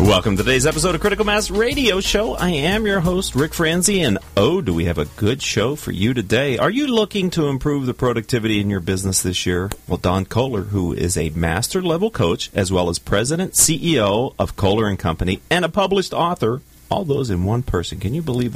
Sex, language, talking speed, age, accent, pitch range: male, English, 215 wpm, 40-59, American, 95-150 Hz